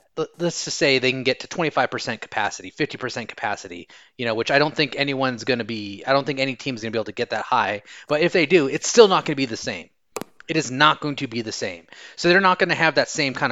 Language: English